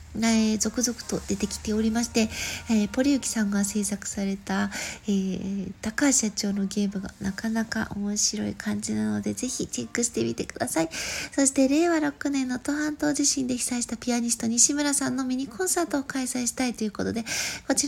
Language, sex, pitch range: Japanese, female, 215-275 Hz